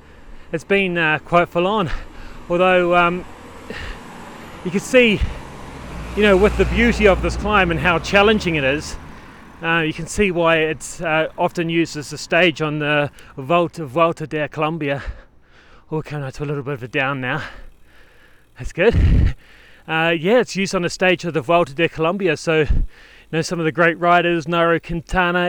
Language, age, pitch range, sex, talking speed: English, 30-49, 135-175 Hz, male, 170 wpm